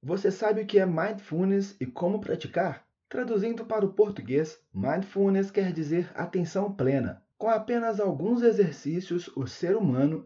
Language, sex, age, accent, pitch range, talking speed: Portuguese, male, 30-49, Brazilian, 155-210 Hz, 145 wpm